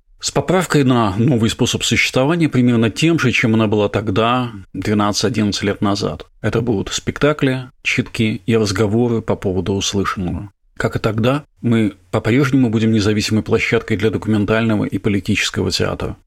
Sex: male